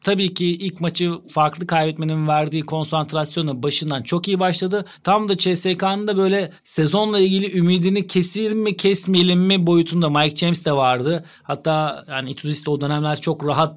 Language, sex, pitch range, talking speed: Turkish, male, 160-190 Hz, 160 wpm